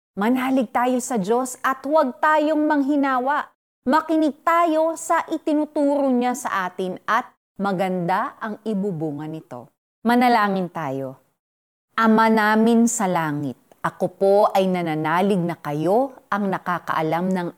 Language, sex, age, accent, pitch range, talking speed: Filipino, female, 30-49, native, 190-285 Hz, 120 wpm